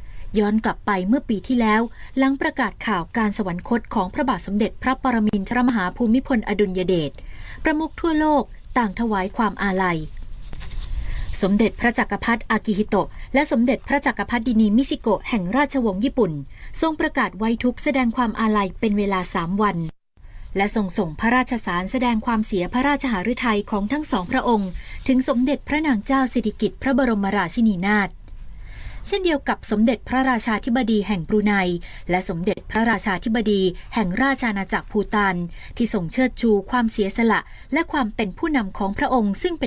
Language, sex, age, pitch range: Thai, female, 20-39, 200-255 Hz